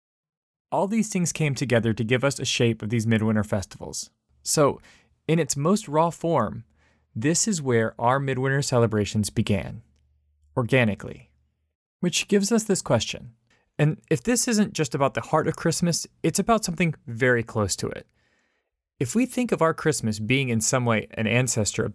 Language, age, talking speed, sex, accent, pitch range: English, 30-49, 170 wpm, male, American, 110-155 Hz